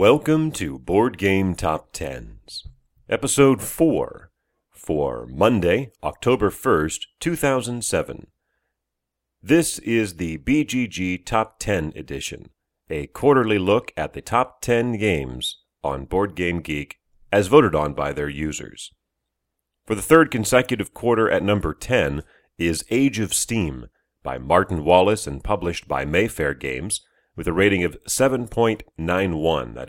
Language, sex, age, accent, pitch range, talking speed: English, male, 40-59, American, 75-110 Hz, 130 wpm